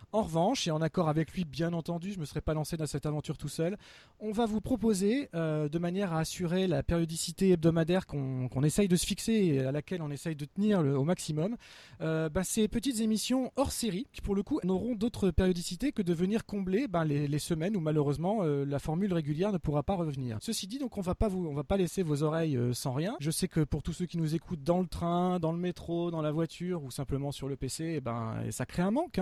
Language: French